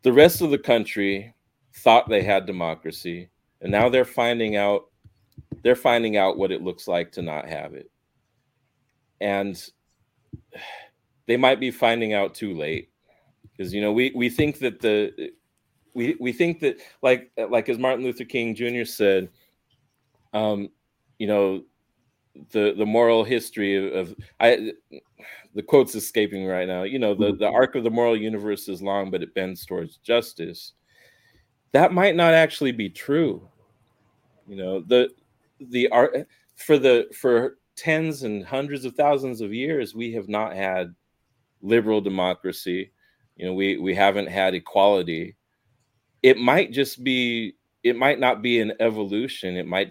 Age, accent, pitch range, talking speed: 30-49, American, 100-130 Hz, 155 wpm